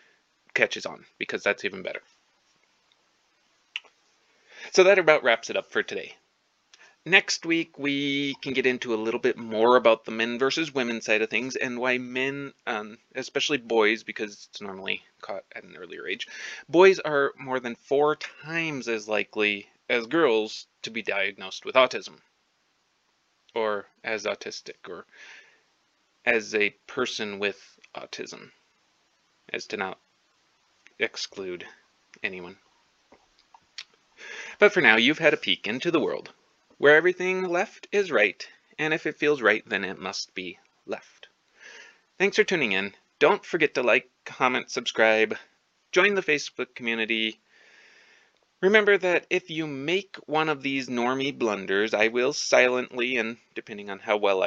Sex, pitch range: male, 120-185 Hz